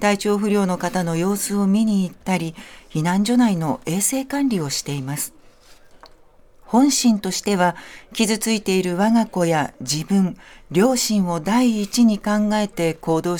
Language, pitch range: Japanese, 170-220 Hz